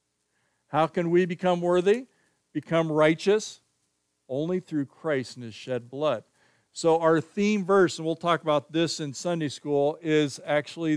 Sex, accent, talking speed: male, American, 155 wpm